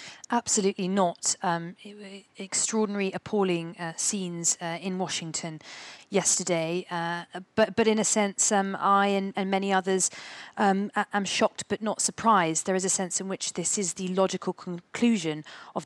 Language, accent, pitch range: English, British, 170-195 Hz